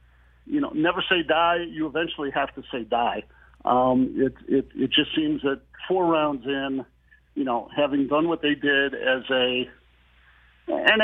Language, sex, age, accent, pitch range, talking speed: English, male, 50-69, American, 135-190 Hz, 170 wpm